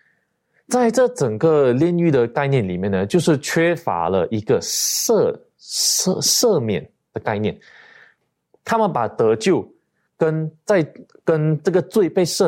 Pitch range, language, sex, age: 105-170 Hz, Chinese, male, 20-39